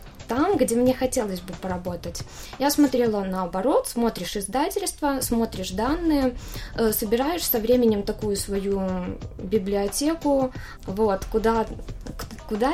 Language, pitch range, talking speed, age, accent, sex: Russian, 195-255 Hz, 105 wpm, 20-39, native, female